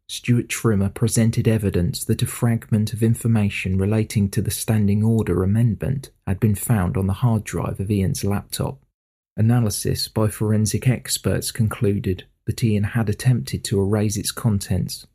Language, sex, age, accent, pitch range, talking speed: English, male, 40-59, British, 100-120 Hz, 150 wpm